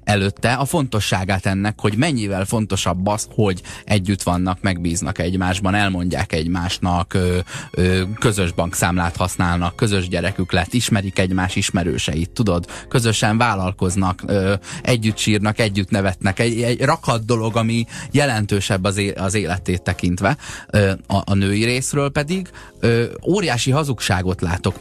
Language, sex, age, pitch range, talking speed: Hungarian, male, 20-39, 95-115 Hz, 115 wpm